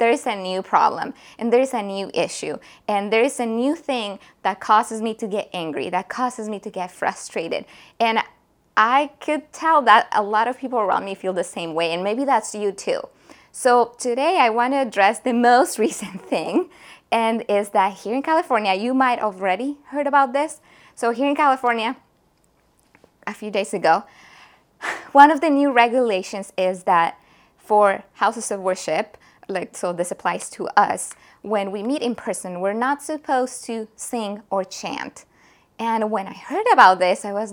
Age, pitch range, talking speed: 20-39, 205-275 Hz, 185 wpm